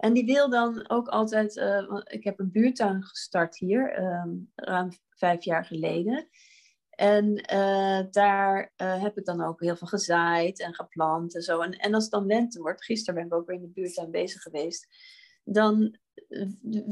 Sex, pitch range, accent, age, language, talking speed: female, 185-250 Hz, Dutch, 30-49, Dutch, 185 wpm